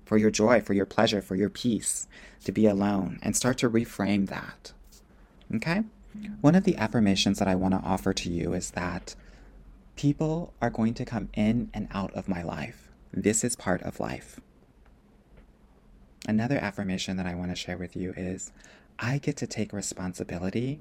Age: 30-49